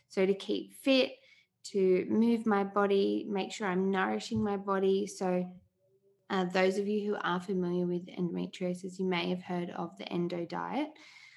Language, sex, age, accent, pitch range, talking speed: English, female, 20-39, Australian, 175-200 Hz, 170 wpm